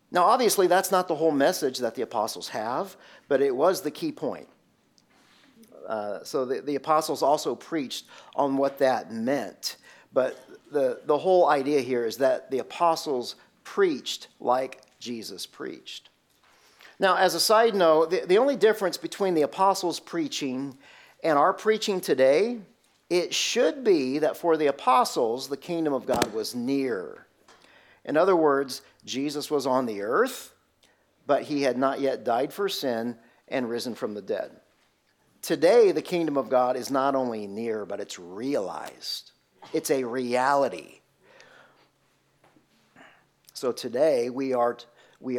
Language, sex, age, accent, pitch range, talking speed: English, male, 50-69, American, 130-195 Hz, 150 wpm